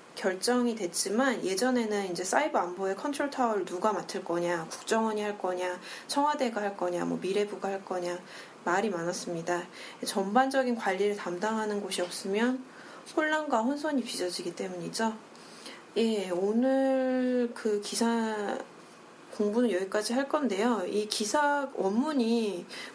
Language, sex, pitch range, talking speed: English, female, 195-245 Hz, 110 wpm